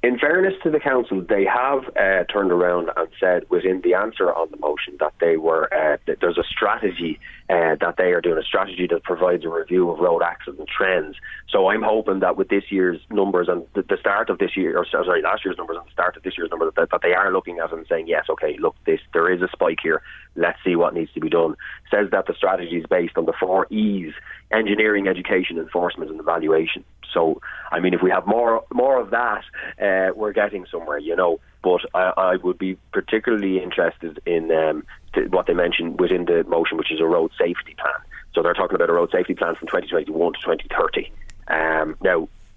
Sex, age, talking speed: male, 30-49, 225 wpm